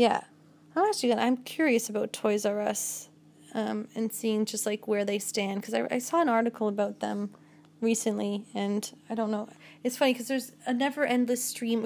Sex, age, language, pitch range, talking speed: female, 20-39, English, 200-245 Hz, 195 wpm